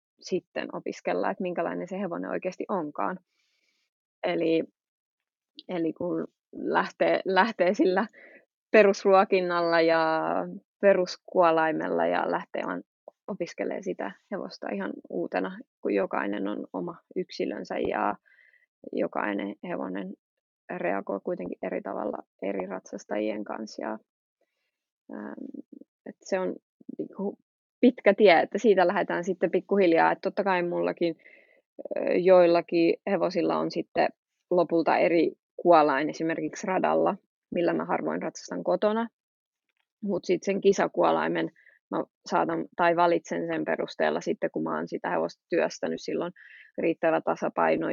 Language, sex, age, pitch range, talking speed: Finnish, female, 20-39, 160-195 Hz, 110 wpm